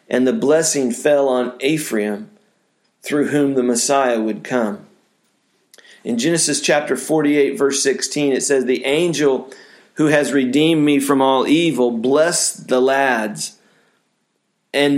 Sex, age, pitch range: male, 40-59, 125-150 Hz